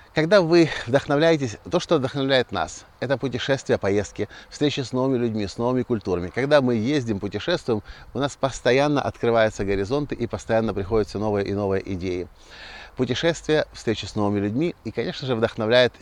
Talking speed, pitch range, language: 160 wpm, 100-135 Hz, Russian